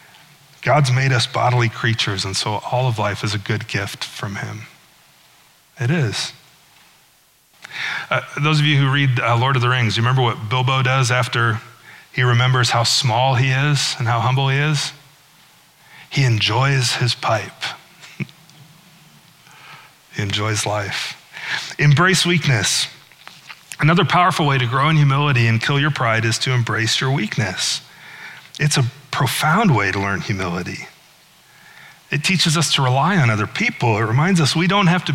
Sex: male